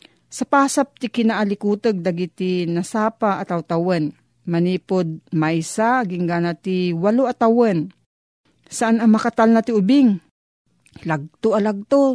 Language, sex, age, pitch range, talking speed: Filipino, female, 40-59, 180-255 Hz, 105 wpm